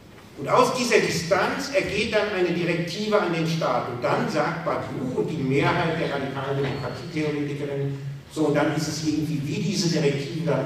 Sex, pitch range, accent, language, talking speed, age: male, 135-160 Hz, German, German, 175 wpm, 50-69